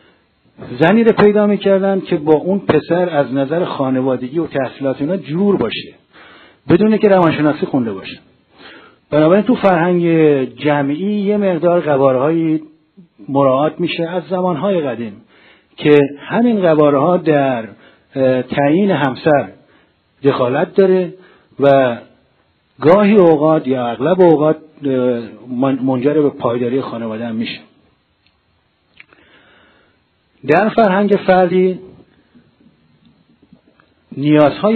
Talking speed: 95 wpm